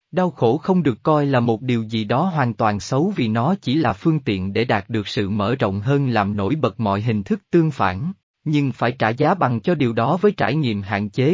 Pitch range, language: 115-155 Hz, Vietnamese